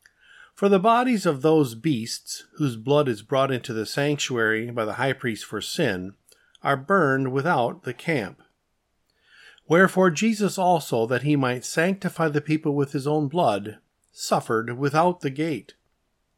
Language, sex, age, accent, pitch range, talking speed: English, male, 50-69, American, 120-165 Hz, 150 wpm